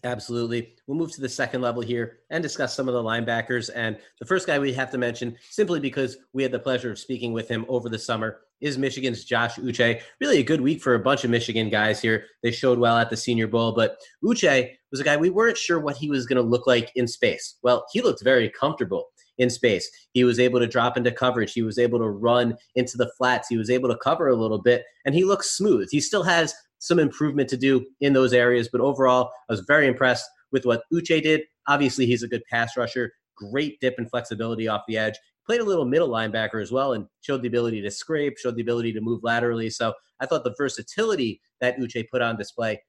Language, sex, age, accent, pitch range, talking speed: English, male, 30-49, American, 115-135 Hz, 240 wpm